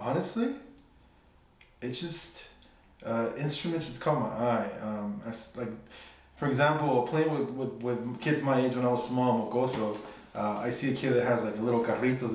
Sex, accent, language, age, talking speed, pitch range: male, American, English, 20-39, 175 wpm, 115-140 Hz